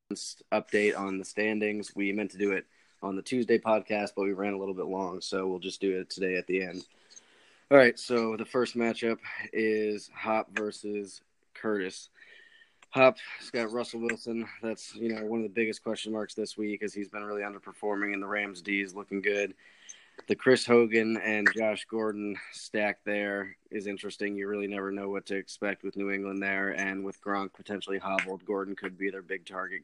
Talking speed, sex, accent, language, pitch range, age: 200 wpm, male, American, English, 100-110 Hz, 20-39